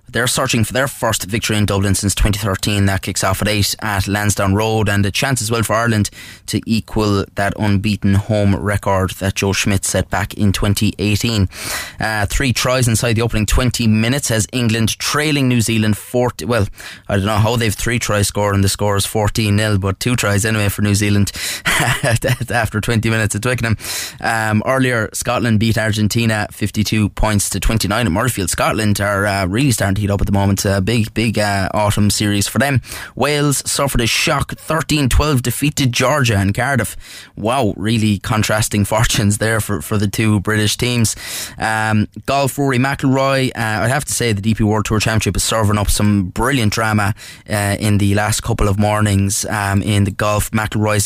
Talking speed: 185 wpm